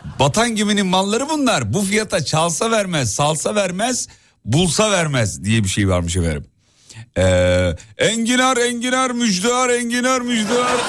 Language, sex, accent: Turkish, male, native